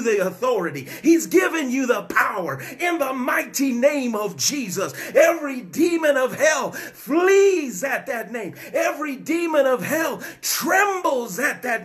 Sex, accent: male, American